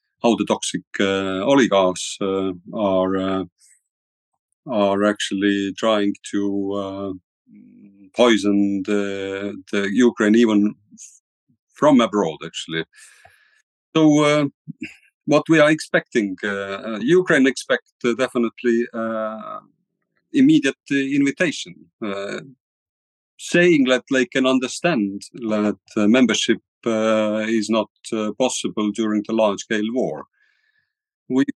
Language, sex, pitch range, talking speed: English, male, 100-135 Hz, 105 wpm